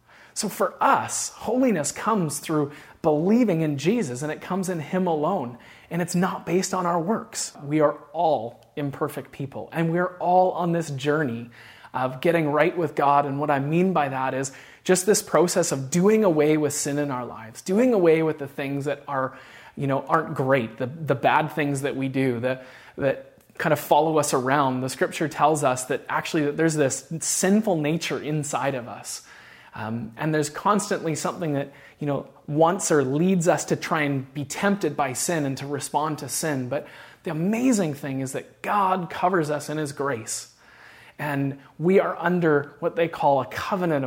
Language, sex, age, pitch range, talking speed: English, male, 30-49, 140-175 Hz, 190 wpm